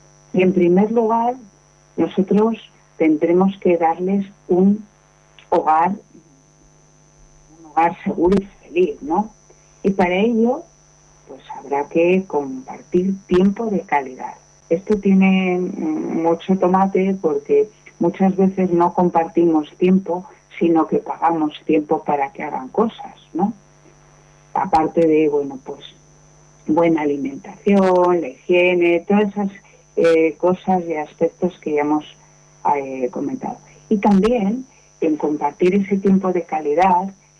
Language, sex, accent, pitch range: Spanish, female, Spanish, 165-205 Hz